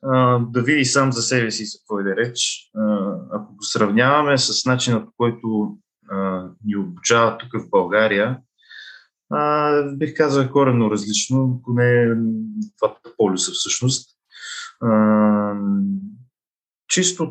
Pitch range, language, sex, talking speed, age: 105-130 Hz, Bulgarian, male, 105 wpm, 20-39